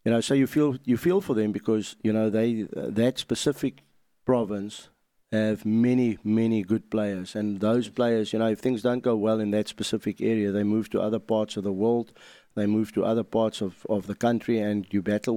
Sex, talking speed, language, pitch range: male, 220 wpm, English, 105-115 Hz